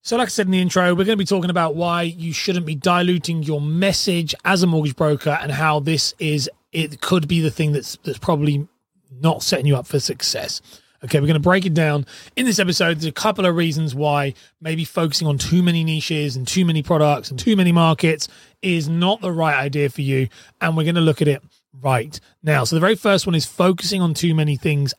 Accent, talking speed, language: British, 240 wpm, English